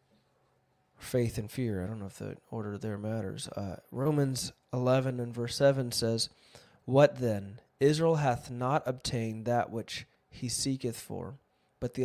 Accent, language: American, English